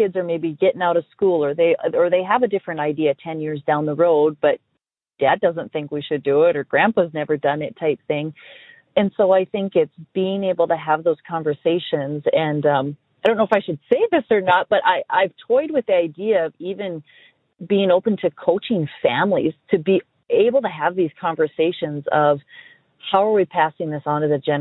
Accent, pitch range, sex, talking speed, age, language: American, 155-195 Hz, female, 215 wpm, 30-49, English